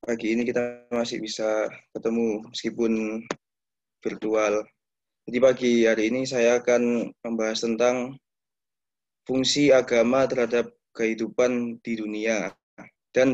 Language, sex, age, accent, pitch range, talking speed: Indonesian, male, 20-39, native, 115-125 Hz, 105 wpm